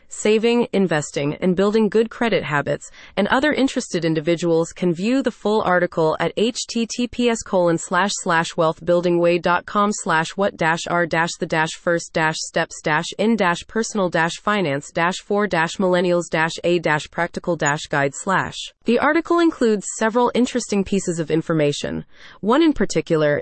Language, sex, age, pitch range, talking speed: English, female, 30-49, 170-230 Hz, 75 wpm